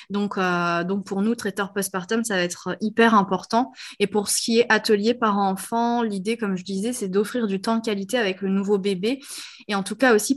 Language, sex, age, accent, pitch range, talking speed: French, female, 20-39, French, 195-230 Hz, 225 wpm